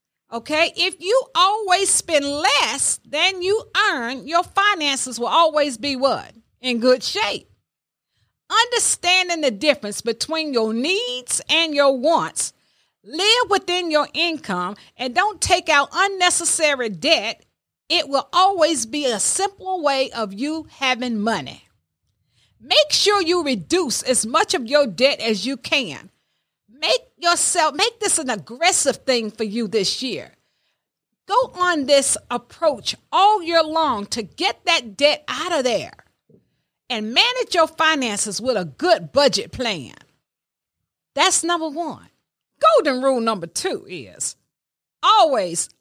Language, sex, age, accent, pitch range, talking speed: English, female, 40-59, American, 250-360 Hz, 135 wpm